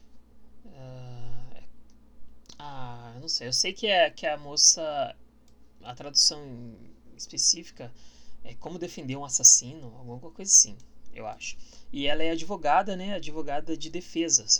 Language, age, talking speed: Portuguese, 20-39, 130 wpm